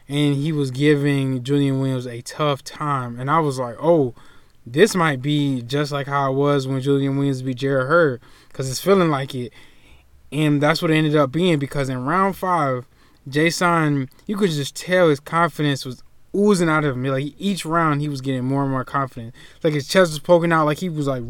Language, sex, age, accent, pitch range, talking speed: English, male, 20-39, American, 135-155 Hz, 210 wpm